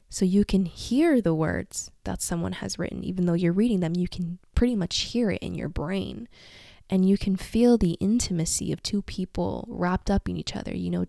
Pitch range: 165-195 Hz